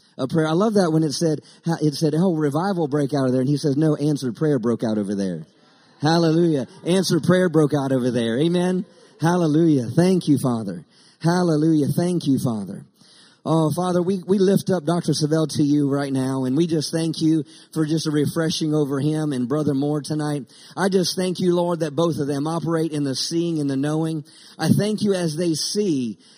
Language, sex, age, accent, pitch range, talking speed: English, male, 40-59, American, 155-195 Hz, 205 wpm